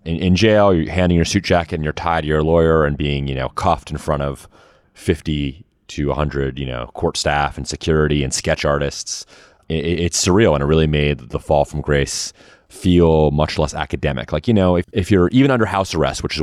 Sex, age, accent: male, 30-49, American